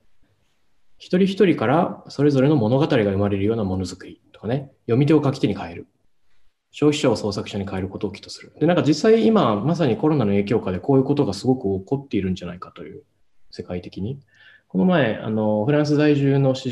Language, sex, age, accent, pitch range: English, male, 20-39, Japanese, 100-140 Hz